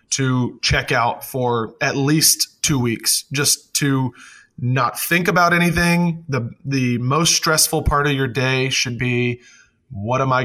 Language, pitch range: English, 120-145 Hz